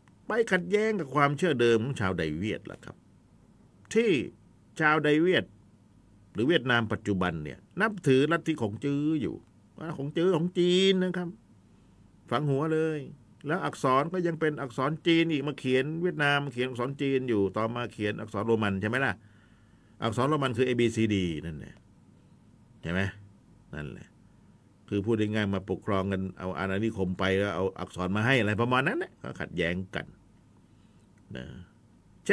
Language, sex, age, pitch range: Thai, male, 50-69, 100-160 Hz